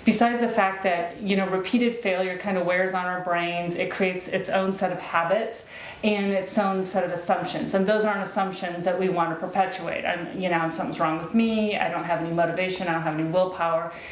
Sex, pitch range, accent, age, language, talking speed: female, 180-210 Hz, American, 30-49, English, 220 wpm